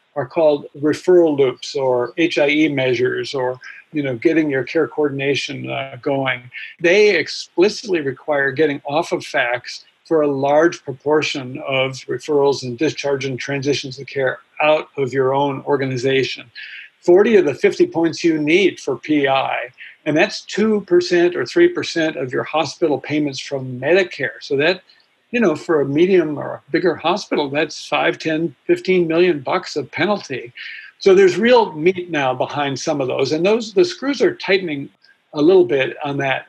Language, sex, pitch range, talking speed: English, male, 140-195 Hz, 165 wpm